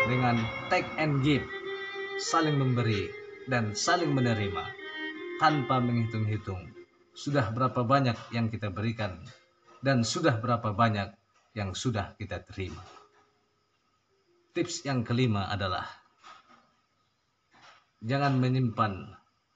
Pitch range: 105-130 Hz